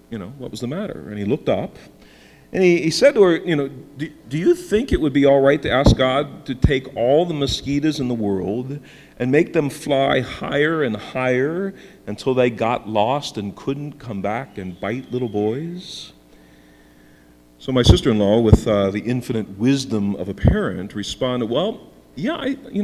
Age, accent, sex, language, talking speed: 50-69, American, male, English, 185 wpm